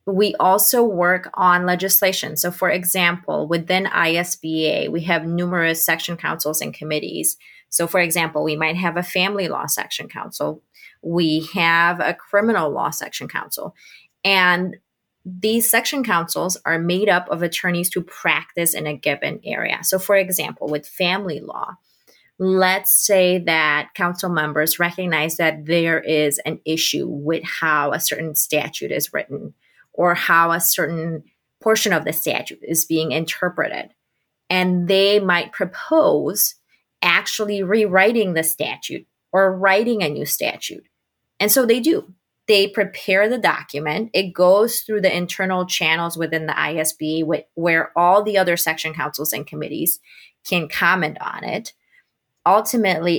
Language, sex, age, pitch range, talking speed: English, female, 20-39, 160-195 Hz, 145 wpm